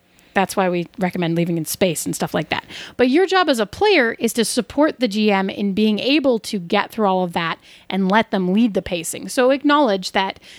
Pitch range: 195-265 Hz